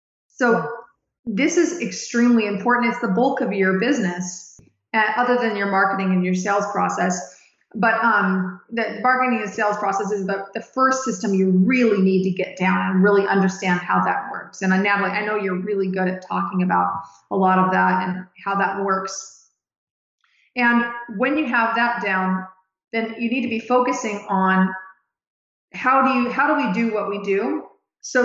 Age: 30-49